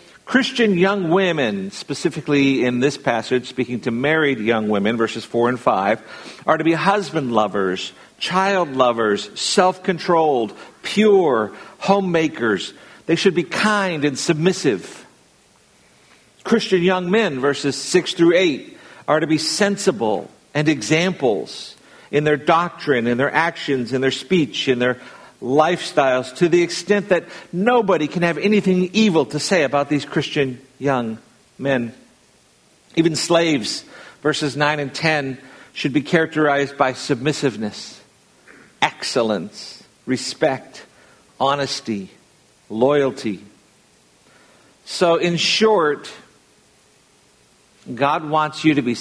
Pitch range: 130-180 Hz